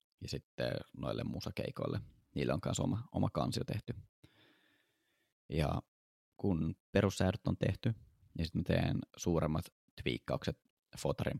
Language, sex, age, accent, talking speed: Finnish, male, 20-39, native, 120 wpm